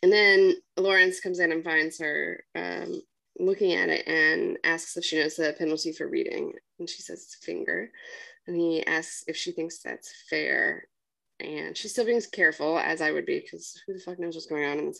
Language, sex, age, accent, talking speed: English, female, 20-39, American, 220 wpm